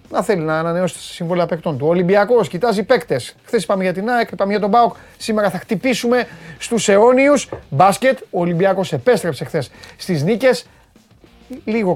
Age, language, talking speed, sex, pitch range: 30-49, Greek, 165 wpm, male, 140-205 Hz